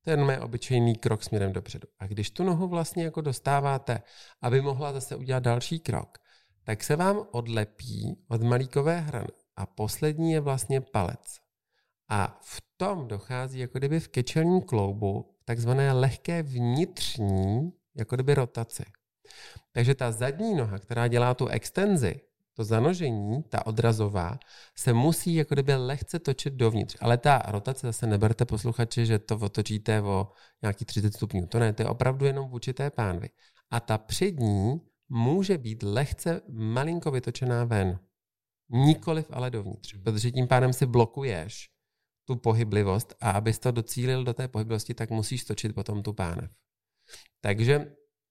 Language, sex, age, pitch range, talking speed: Czech, male, 40-59, 110-140 Hz, 150 wpm